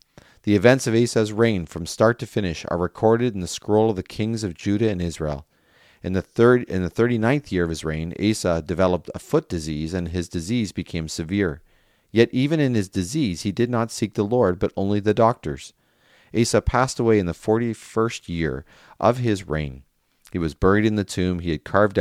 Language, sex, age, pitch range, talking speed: English, male, 40-59, 80-100 Hz, 205 wpm